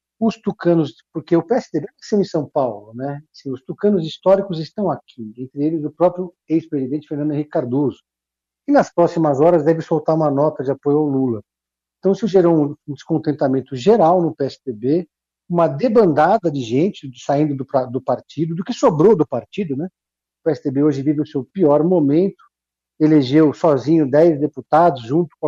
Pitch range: 135-175 Hz